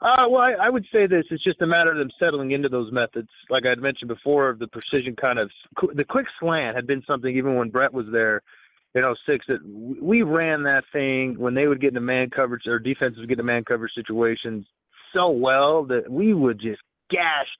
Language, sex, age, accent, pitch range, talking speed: English, male, 30-49, American, 120-145 Hz, 230 wpm